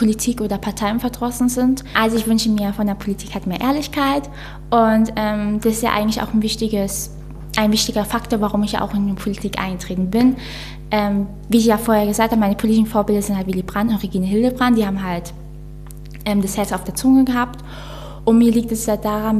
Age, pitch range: 10-29, 195-220 Hz